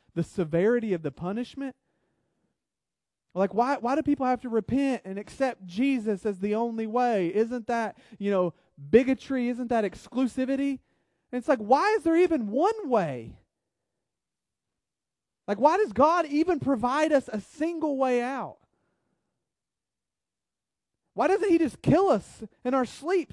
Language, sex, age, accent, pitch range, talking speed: English, male, 30-49, American, 185-265 Hz, 145 wpm